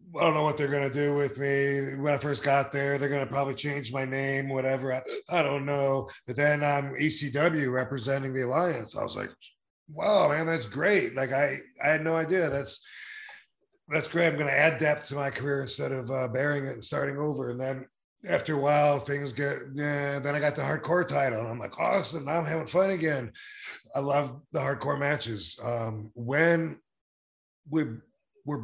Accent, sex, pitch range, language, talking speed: American, male, 125-150 Hz, English, 200 wpm